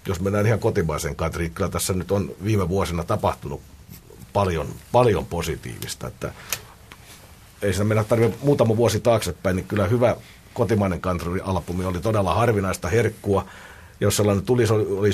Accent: native